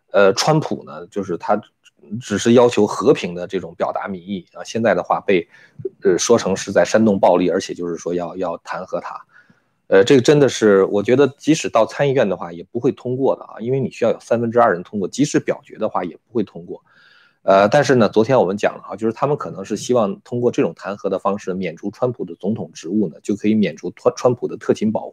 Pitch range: 95-120 Hz